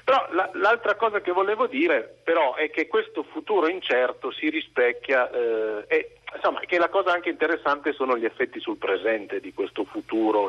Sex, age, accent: male, 40-59, native